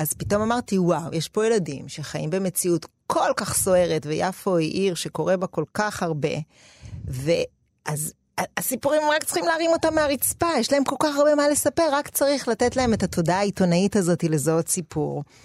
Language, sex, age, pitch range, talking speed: Hebrew, female, 40-59, 165-245 Hz, 175 wpm